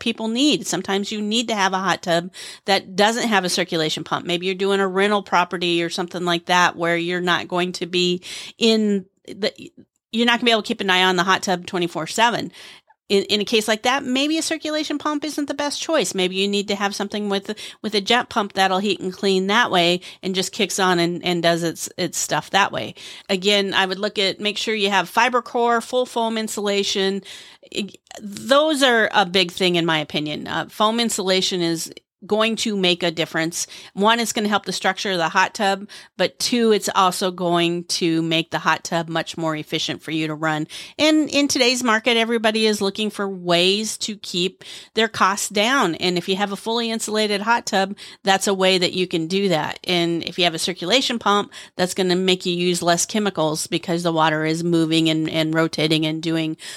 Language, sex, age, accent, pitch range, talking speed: English, female, 40-59, American, 175-220 Hz, 220 wpm